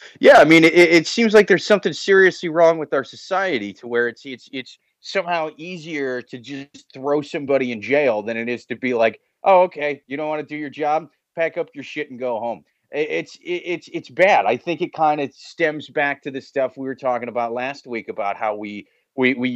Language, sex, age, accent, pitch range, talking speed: English, male, 30-49, American, 120-165 Hz, 230 wpm